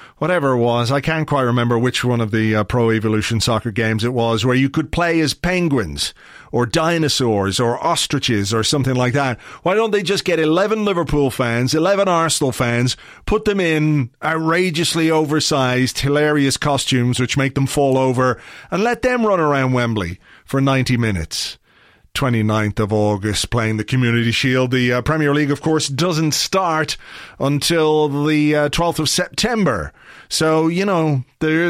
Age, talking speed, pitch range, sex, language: 40-59, 170 wpm, 120-160 Hz, male, English